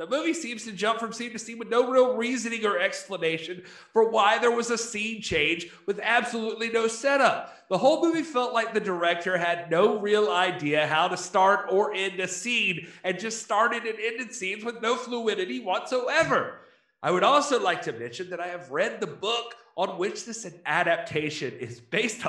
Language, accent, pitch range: English, American, 170-245 Hz